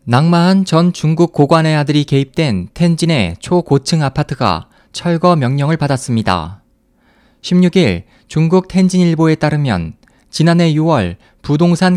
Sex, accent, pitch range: male, native, 140-175 Hz